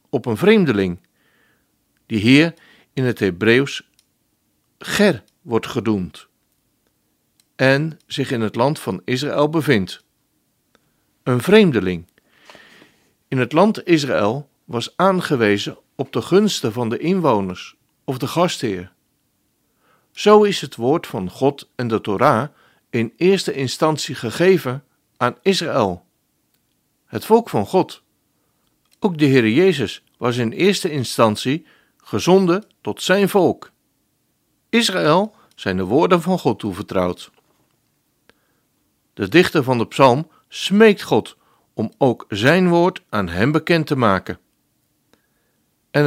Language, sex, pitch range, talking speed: Dutch, male, 115-175 Hz, 120 wpm